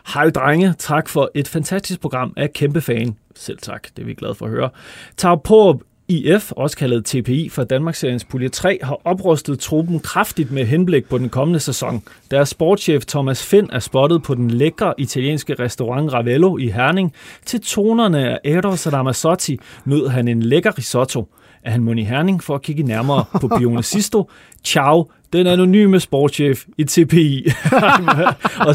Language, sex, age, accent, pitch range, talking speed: Danish, male, 30-49, native, 125-165 Hz, 170 wpm